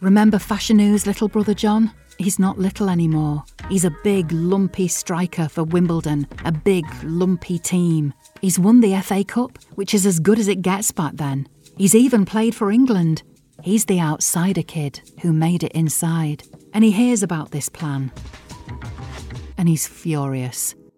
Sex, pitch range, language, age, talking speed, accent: female, 150-195 Hz, English, 40-59, 165 wpm, British